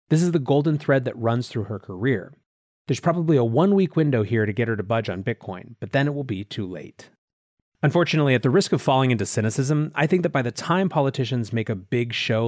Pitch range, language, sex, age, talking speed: 115-150 Hz, English, male, 30-49, 235 wpm